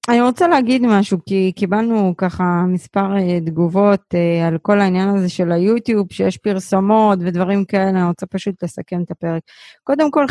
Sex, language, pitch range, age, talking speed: female, Hebrew, 190-250 Hz, 30-49, 155 wpm